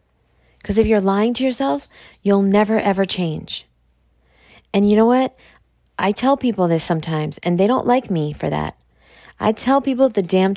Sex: female